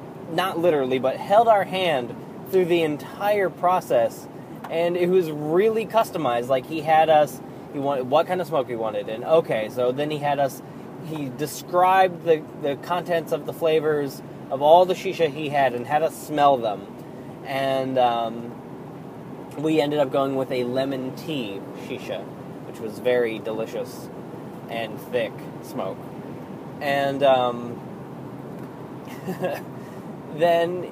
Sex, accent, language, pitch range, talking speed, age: male, American, English, 135-175 Hz, 145 wpm, 20-39